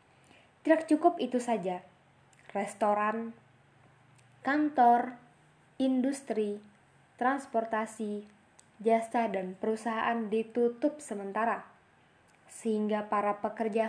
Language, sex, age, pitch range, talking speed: Indonesian, female, 20-39, 205-250 Hz, 70 wpm